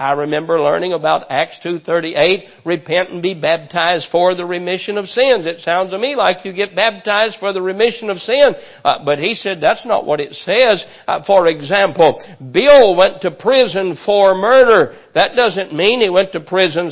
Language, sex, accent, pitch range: English, male, American, 175-220 Hz